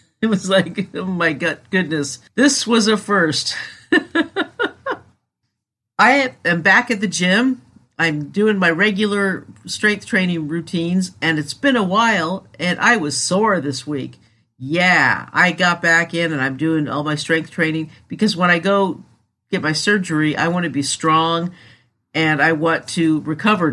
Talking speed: 160 wpm